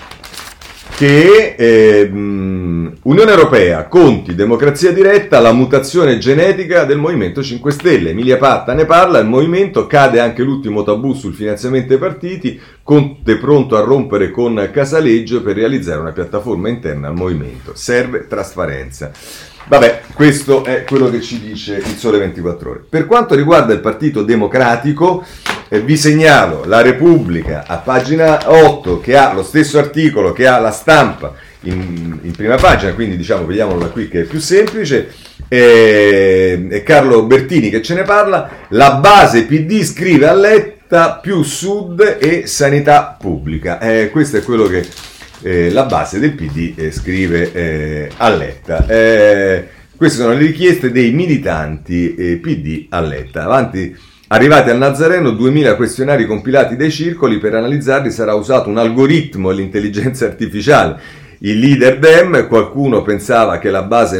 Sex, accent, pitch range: male, native, 95-150 Hz